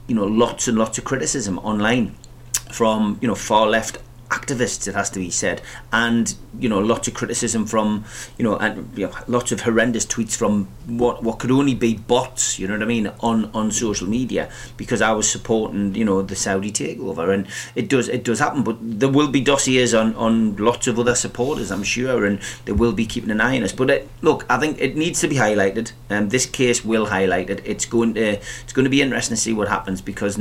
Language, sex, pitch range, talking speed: English, male, 105-120 Hz, 235 wpm